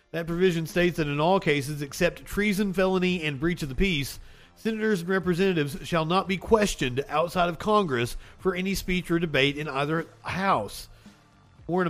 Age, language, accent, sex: 40-59, English, American, male